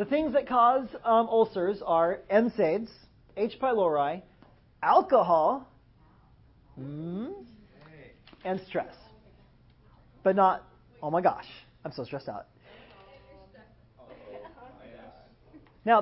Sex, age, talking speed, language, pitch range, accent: male, 30-49, 90 wpm, English, 160-225 Hz, American